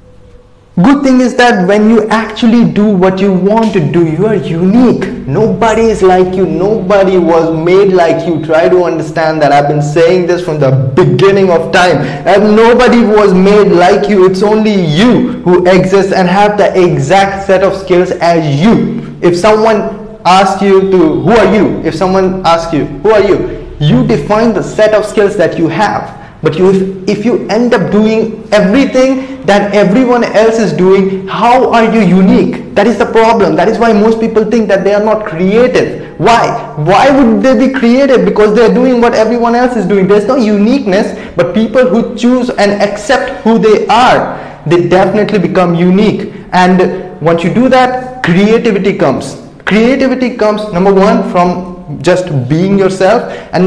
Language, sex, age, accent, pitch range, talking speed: English, male, 20-39, Indian, 180-225 Hz, 180 wpm